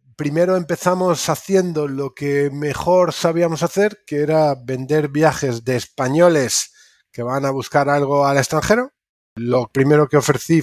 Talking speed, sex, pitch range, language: 140 wpm, male, 125-155 Hz, Spanish